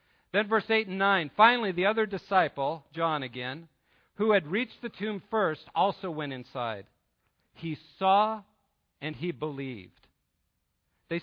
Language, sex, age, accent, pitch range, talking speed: English, male, 50-69, American, 135-200 Hz, 140 wpm